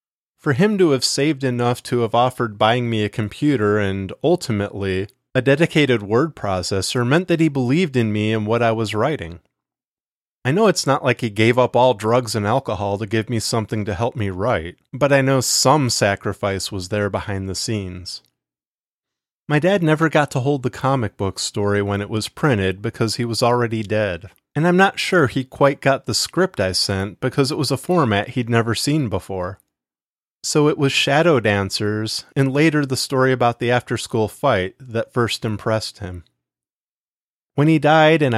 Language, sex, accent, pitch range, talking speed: English, male, American, 100-135 Hz, 190 wpm